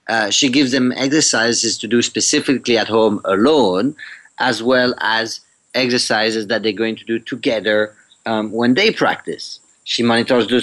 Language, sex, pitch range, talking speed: English, male, 115-150 Hz, 150 wpm